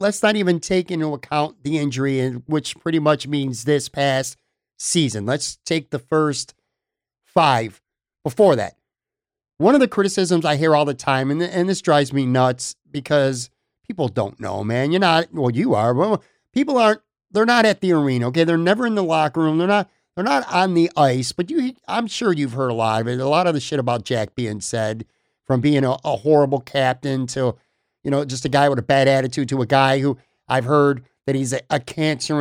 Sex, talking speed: male, 210 wpm